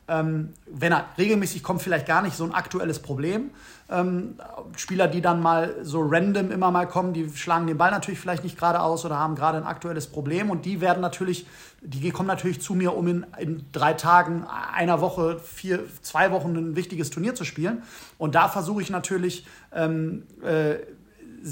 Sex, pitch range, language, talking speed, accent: male, 160-195 Hz, German, 190 wpm, German